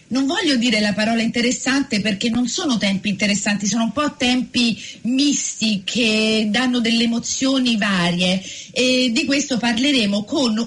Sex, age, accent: female, 40-59, native